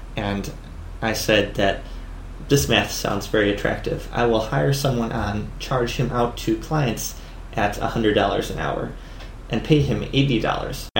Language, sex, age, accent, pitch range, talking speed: English, male, 30-49, American, 105-130 Hz, 145 wpm